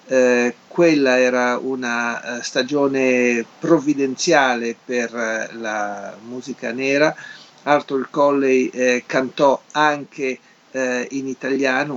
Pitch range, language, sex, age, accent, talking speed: 125-150 Hz, Italian, male, 50-69, native, 100 wpm